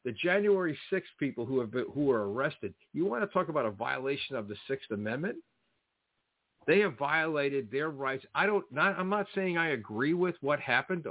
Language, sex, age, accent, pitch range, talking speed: English, male, 50-69, American, 115-160 Hz, 200 wpm